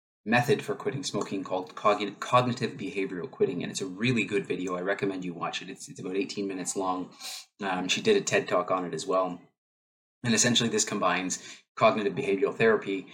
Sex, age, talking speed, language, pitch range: male, 20-39, 190 wpm, English, 90-115 Hz